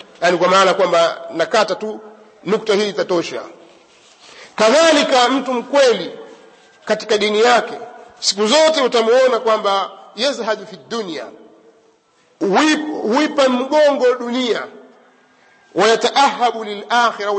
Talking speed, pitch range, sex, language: 95 wpm, 205-260 Hz, male, Swahili